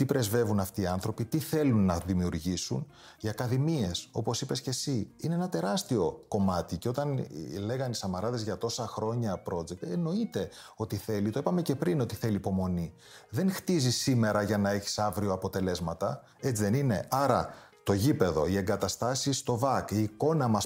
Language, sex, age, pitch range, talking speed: Greek, male, 30-49, 100-140 Hz, 170 wpm